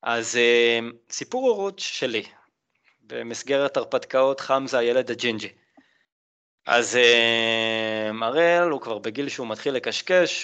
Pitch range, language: 115-185 Hz, Hebrew